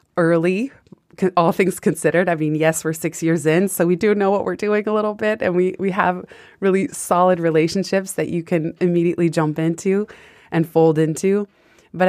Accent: American